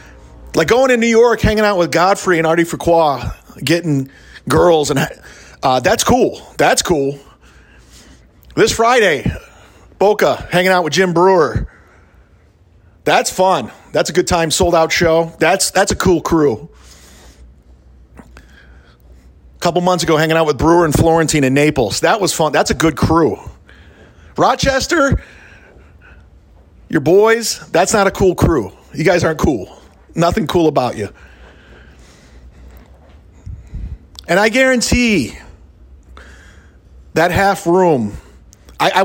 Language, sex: English, male